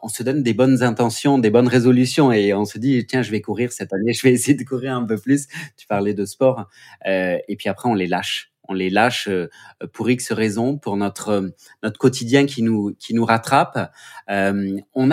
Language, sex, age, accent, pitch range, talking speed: French, male, 30-49, French, 120-165 Hz, 220 wpm